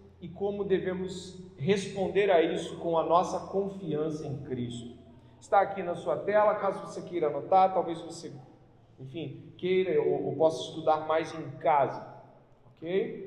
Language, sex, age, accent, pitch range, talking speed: Portuguese, male, 40-59, Brazilian, 160-210 Hz, 150 wpm